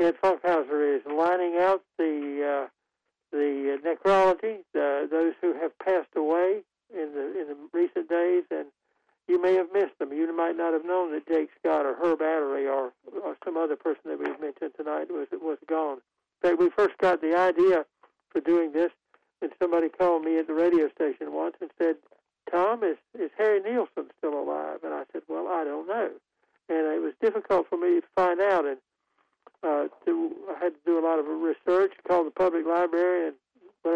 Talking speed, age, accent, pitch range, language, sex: 195 wpm, 60-79, American, 160-185 Hz, English, male